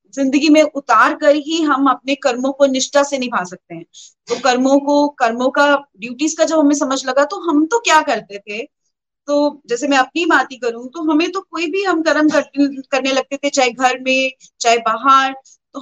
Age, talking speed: 30-49, 210 wpm